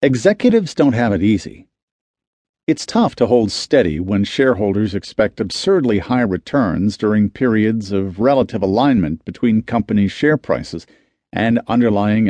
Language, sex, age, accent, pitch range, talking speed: English, male, 50-69, American, 105-130 Hz, 130 wpm